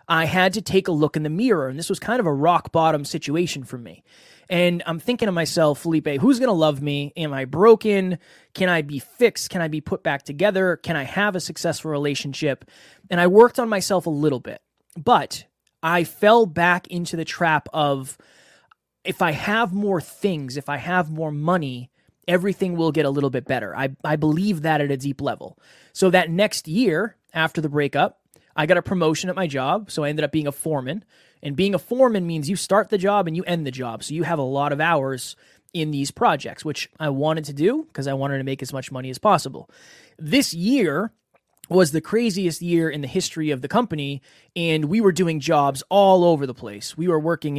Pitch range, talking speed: 145-185 Hz, 220 wpm